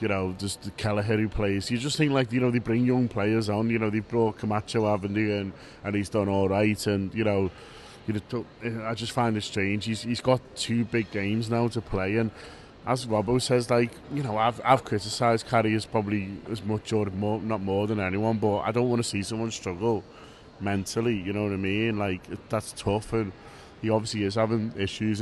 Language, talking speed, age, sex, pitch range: English, 220 wpm, 20-39, male, 105-115 Hz